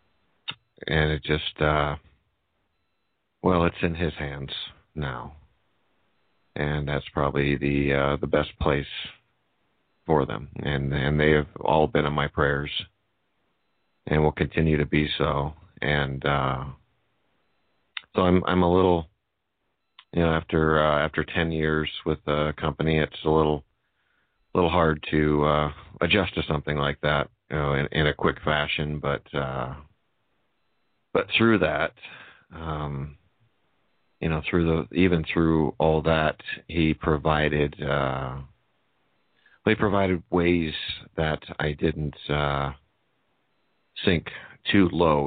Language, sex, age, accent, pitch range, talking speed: English, male, 40-59, American, 70-80 Hz, 130 wpm